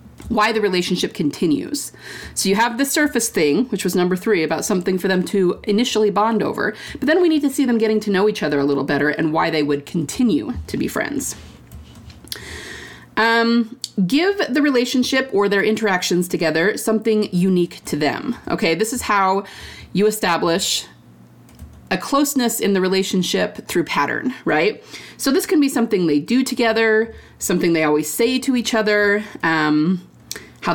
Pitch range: 165-230 Hz